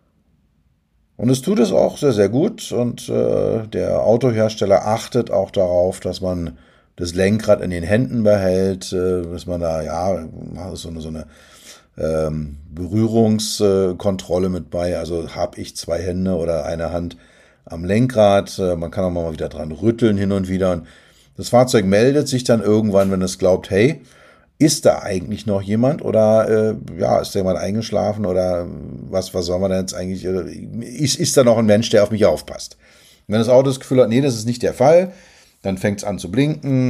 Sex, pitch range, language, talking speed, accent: male, 90-115 Hz, German, 185 wpm, German